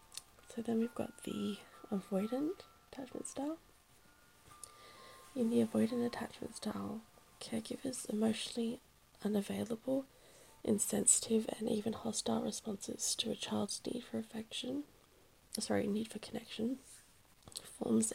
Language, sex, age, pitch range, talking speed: English, female, 10-29, 210-240 Hz, 105 wpm